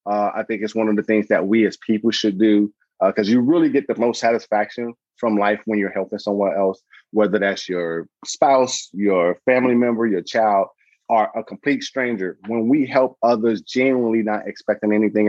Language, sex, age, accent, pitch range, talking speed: English, male, 30-49, American, 105-130 Hz, 195 wpm